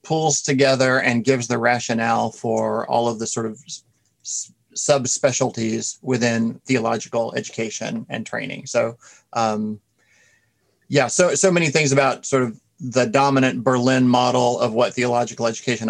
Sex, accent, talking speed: male, American, 145 wpm